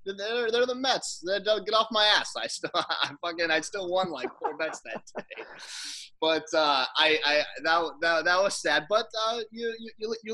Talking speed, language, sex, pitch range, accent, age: 205 wpm, English, male, 130-180 Hz, American, 20-39